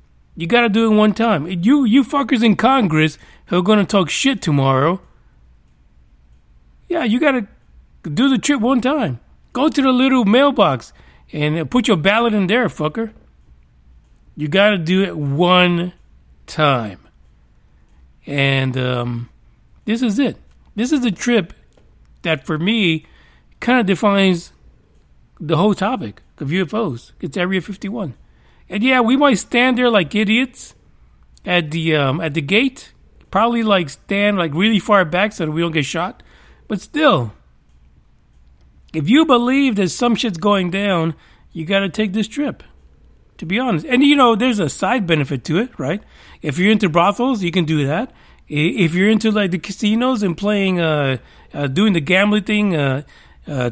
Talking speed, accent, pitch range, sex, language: 170 wpm, American, 140-225 Hz, male, English